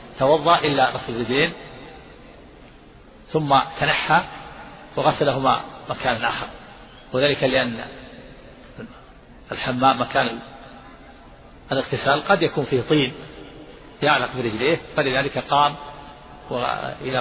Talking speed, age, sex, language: 85 wpm, 50-69, male, Arabic